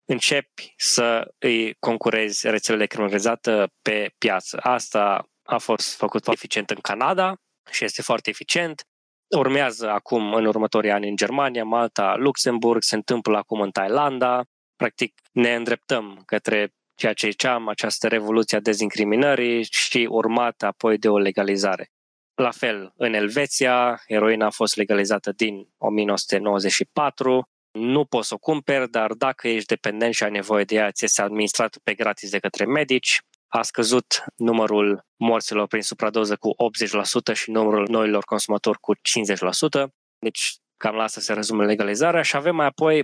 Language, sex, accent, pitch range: English, male, Romanian, 105-125 Hz